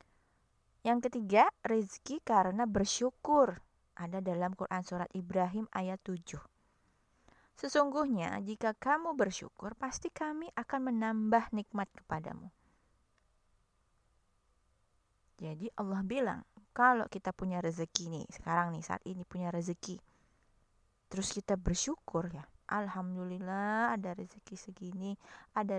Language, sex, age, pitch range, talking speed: Indonesian, female, 20-39, 170-220 Hz, 105 wpm